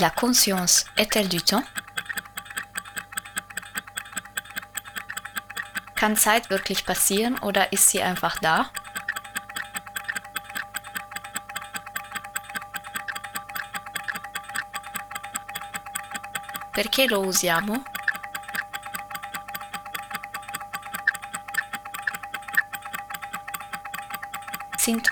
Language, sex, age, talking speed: Italian, female, 20-39, 45 wpm